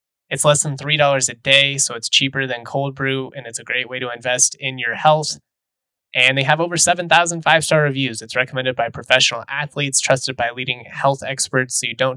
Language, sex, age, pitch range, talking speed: English, male, 20-39, 125-145 Hz, 205 wpm